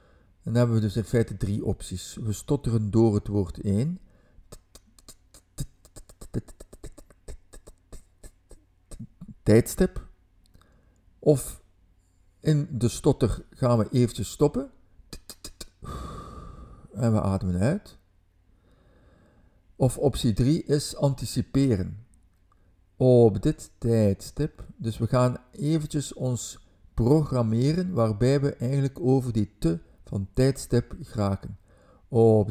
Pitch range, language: 90-130 Hz, Dutch